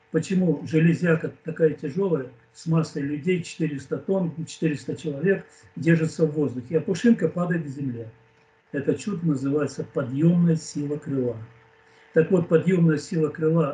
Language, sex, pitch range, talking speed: Russian, male, 145-180 Hz, 130 wpm